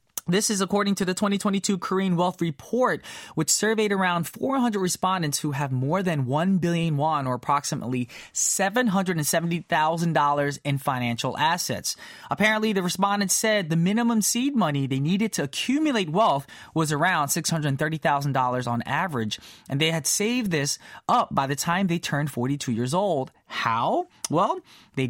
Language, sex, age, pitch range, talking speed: English, male, 20-39, 150-215 Hz, 150 wpm